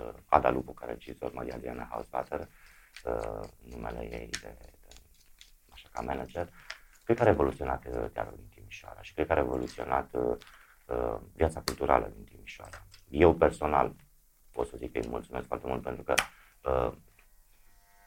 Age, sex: 30-49, male